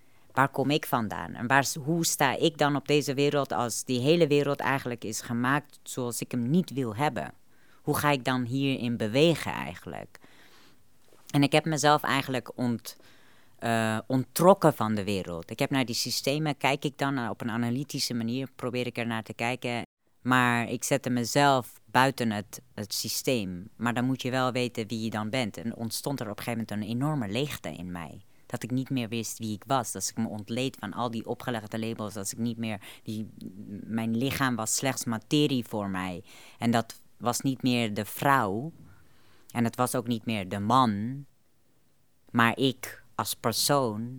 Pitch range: 110-135 Hz